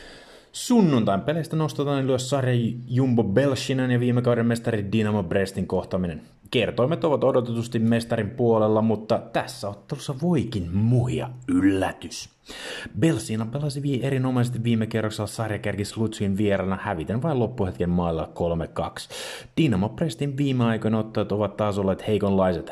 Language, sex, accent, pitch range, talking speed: Finnish, male, native, 95-120 Hz, 120 wpm